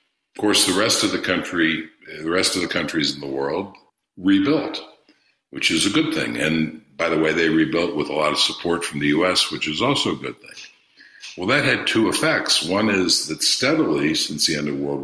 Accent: American